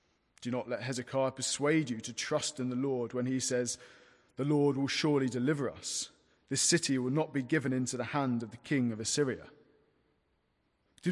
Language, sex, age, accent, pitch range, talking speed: English, male, 40-59, British, 120-145 Hz, 190 wpm